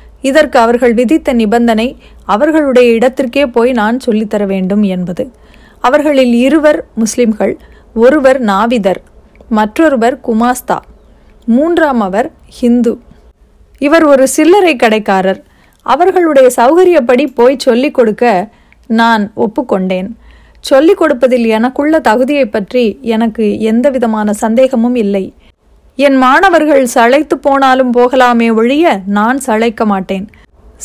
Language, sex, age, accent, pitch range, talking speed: Tamil, female, 30-49, native, 225-270 Hz, 95 wpm